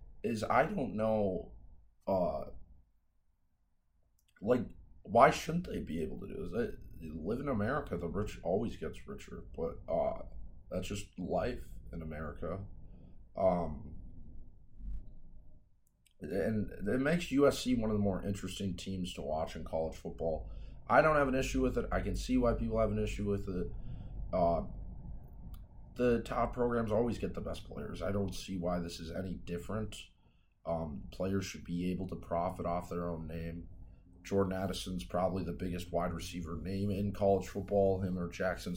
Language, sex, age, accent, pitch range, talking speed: English, male, 30-49, American, 85-105 Hz, 160 wpm